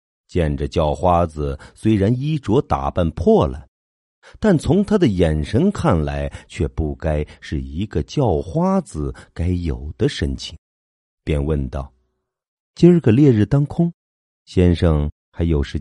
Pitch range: 70-100 Hz